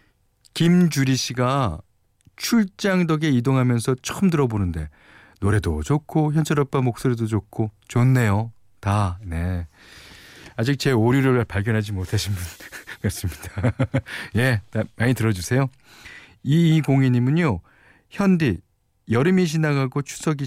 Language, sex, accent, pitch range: Korean, male, native, 100-145 Hz